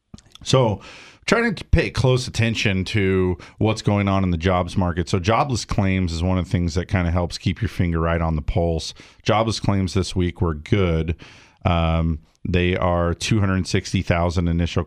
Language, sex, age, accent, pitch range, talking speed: English, male, 40-59, American, 85-100 Hz, 180 wpm